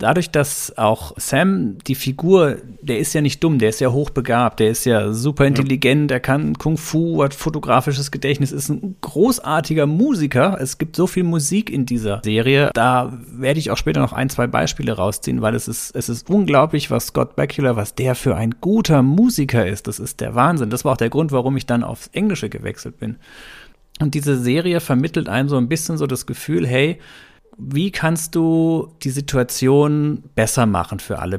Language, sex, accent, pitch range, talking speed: German, male, German, 115-150 Hz, 195 wpm